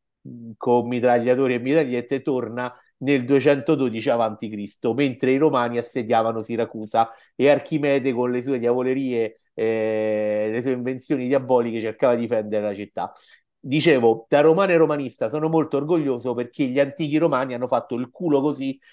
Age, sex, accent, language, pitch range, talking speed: 50-69, male, native, Italian, 115-140 Hz, 150 wpm